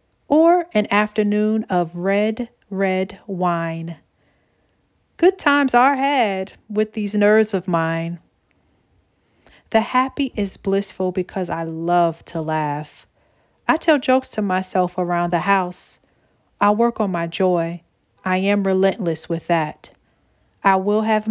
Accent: American